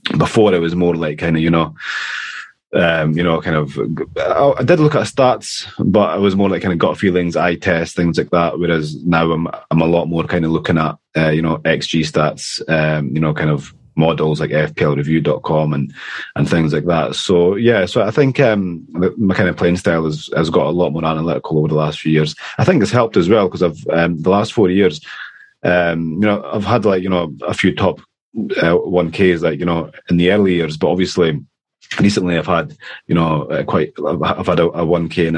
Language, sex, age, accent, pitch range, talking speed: English, male, 30-49, British, 80-90 Hz, 230 wpm